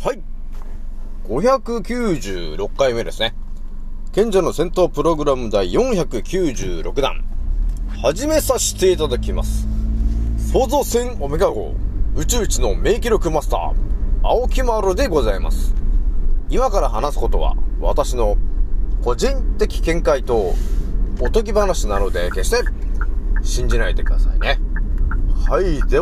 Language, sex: Japanese, male